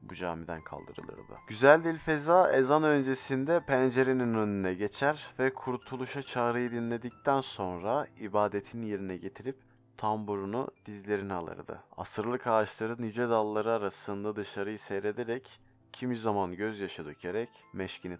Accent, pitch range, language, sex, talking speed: native, 100-135 Hz, Turkish, male, 110 wpm